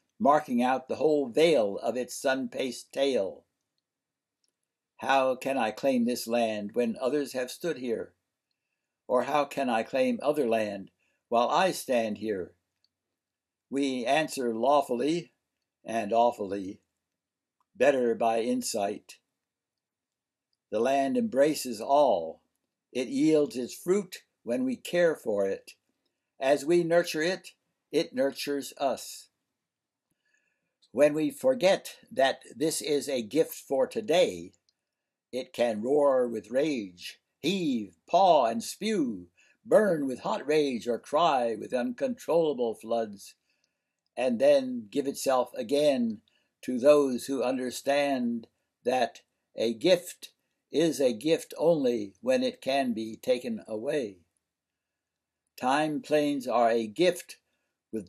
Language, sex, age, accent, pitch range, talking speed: English, male, 60-79, American, 115-175 Hz, 120 wpm